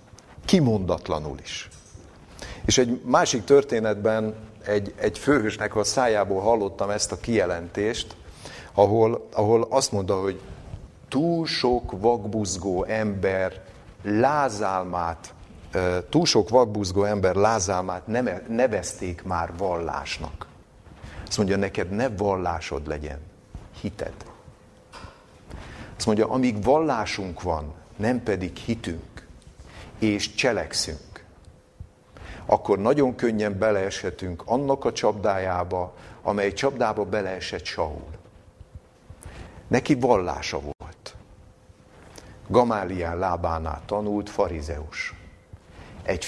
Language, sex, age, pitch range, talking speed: Hungarian, male, 50-69, 90-110 Hz, 90 wpm